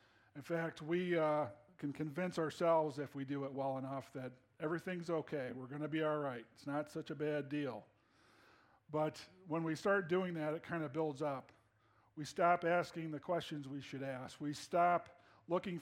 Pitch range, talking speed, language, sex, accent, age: 130-170 Hz, 190 wpm, English, male, American, 50-69